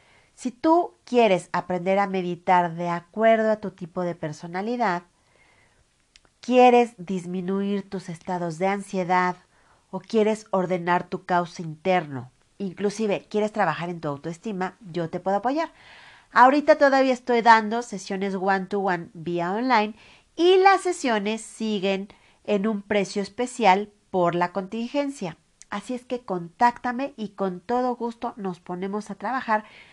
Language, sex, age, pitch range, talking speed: Spanish, female, 40-59, 185-240 Hz, 135 wpm